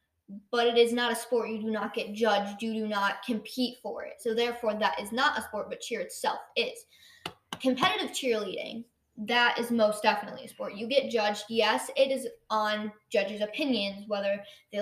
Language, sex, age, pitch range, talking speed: English, female, 10-29, 205-240 Hz, 190 wpm